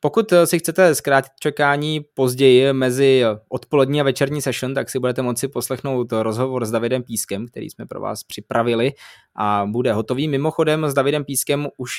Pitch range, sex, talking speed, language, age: 125-155 Hz, male, 165 wpm, Czech, 20-39